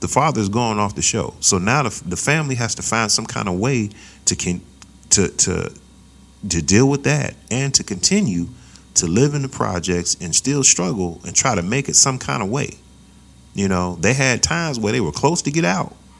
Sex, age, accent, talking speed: male, 40-59, American, 210 wpm